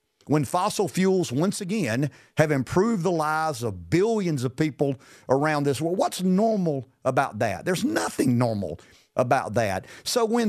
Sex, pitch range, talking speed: male, 135-195 Hz, 155 wpm